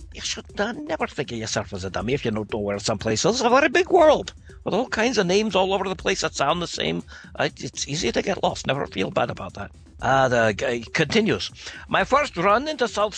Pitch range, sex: 130-210 Hz, male